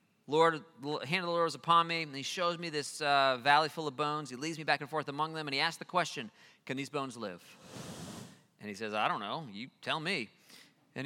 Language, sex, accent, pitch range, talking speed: English, male, American, 125-155 Hz, 245 wpm